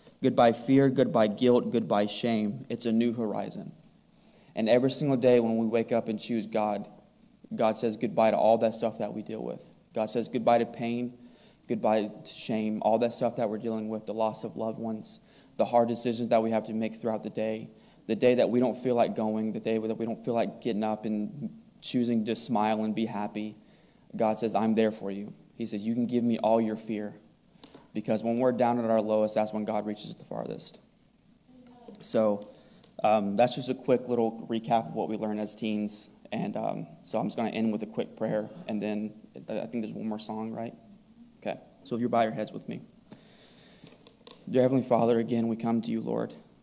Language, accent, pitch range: English, American, 110-120 Hz